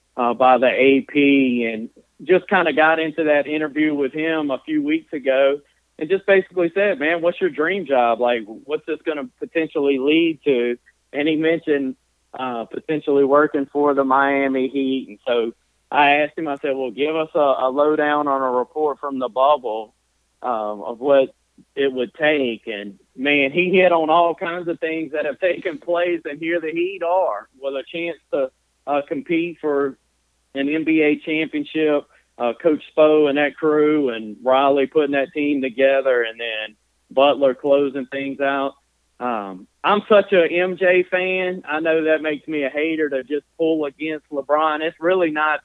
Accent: American